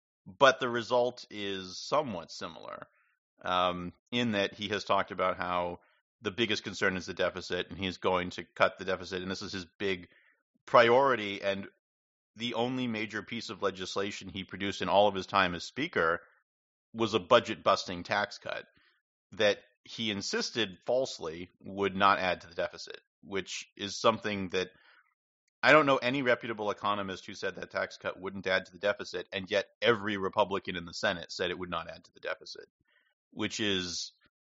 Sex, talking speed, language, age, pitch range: male, 175 wpm, English, 40-59, 90-115 Hz